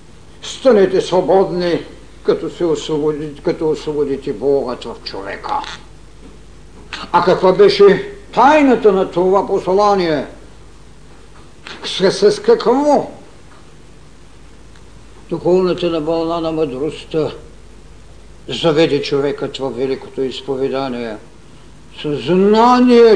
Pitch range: 160-230 Hz